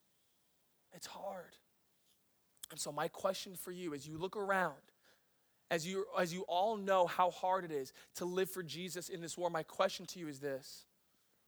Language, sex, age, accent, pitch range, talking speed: English, male, 20-39, American, 185-290 Hz, 185 wpm